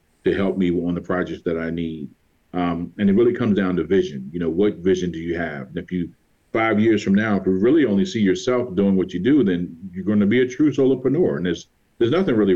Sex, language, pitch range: male, English, 90-105 Hz